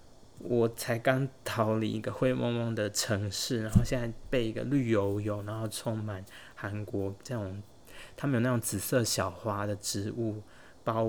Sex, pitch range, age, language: male, 105-125 Hz, 20-39, Chinese